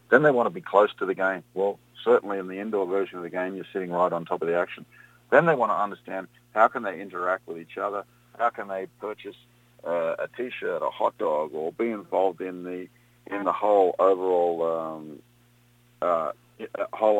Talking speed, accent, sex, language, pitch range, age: 200 wpm, Australian, male, English, 90-135 Hz, 50-69